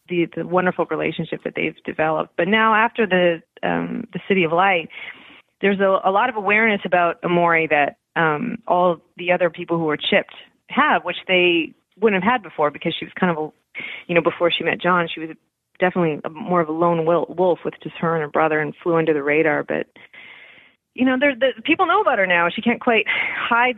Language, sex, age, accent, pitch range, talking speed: English, female, 30-49, American, 165-215 Hz, 215 wpm